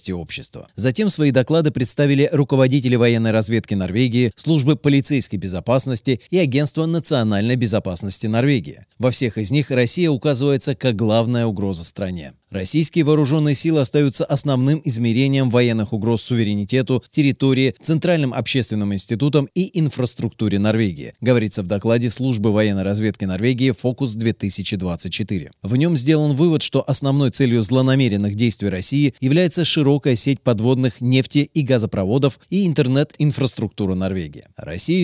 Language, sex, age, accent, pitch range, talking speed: Russian, male, 30-49, native, 110-145 Hz, 120 wpm